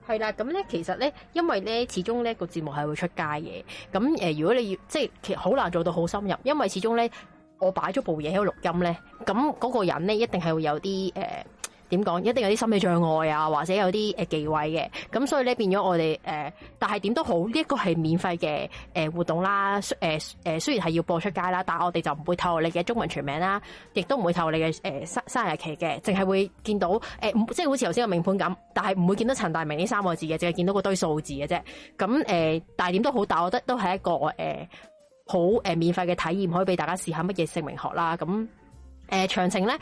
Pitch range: 165-210 Hz